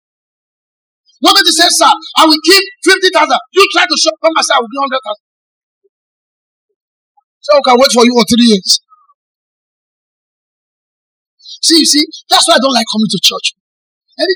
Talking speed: 165 wpm